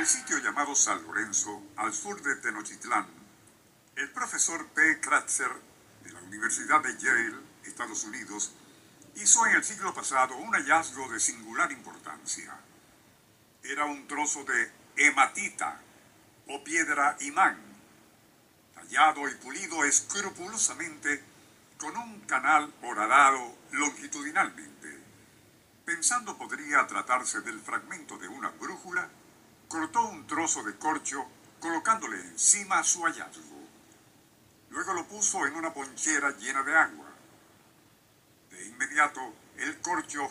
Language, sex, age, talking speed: Spanish, male, 60-79, 115 wpm